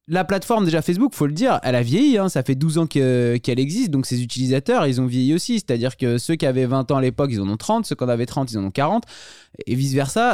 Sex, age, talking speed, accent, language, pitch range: male, 20-39, 290 wpm, French, French, 120-165 Hz